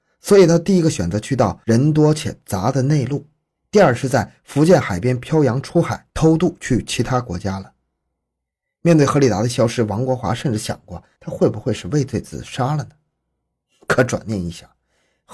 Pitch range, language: 100-135 Hz, Chinese